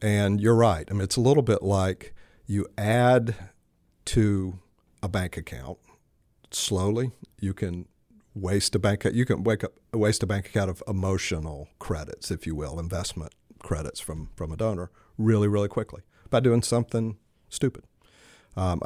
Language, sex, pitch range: English, male, 90-110 Hz